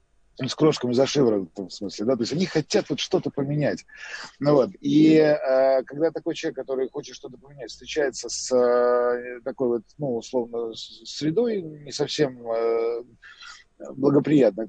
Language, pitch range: Russian, 130-175 Hz